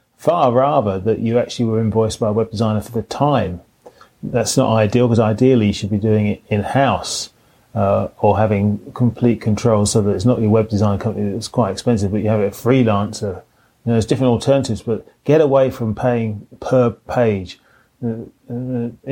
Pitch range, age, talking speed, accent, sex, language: 110-125 Hz, 30-49, 180 wpm, British, male, English